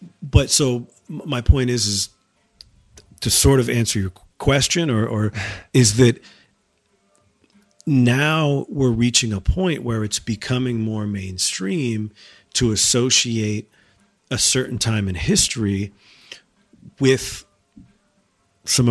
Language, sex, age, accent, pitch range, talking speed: English, male, 40-59, American, 100-120 Hz, 110 wpm